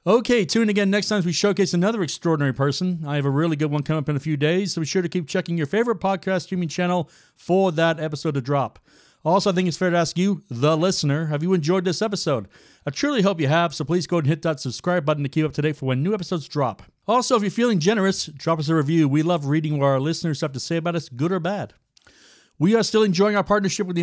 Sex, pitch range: male, 145-185 Hz